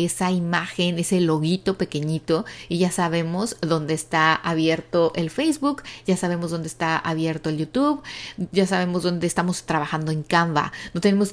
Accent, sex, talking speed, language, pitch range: Mexican, female, 155 wpm, Spanish, 160-190 Hz